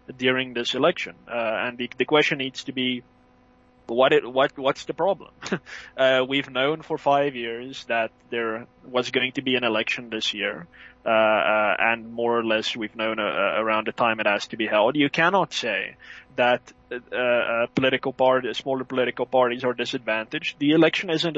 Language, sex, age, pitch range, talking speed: English, male, 20-39, 120-140 Hz, 180 wpm